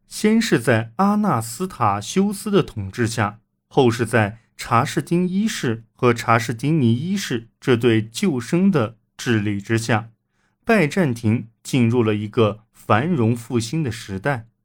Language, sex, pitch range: Chinese, male, 105-145 Hz